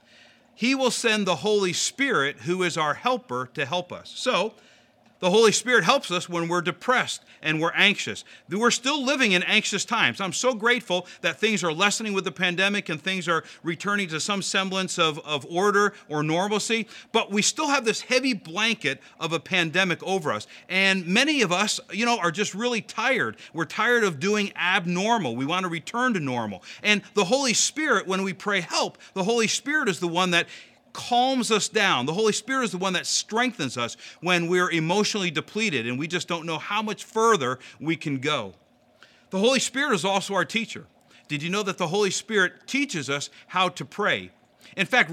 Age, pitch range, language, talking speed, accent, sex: 40-59, 175-235 Hz, English, 200 wpm, American, male